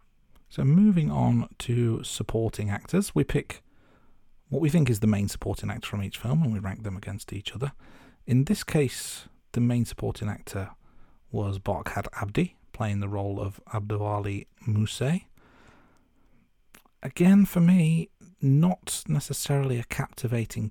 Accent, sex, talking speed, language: British, male, 140 wpm, English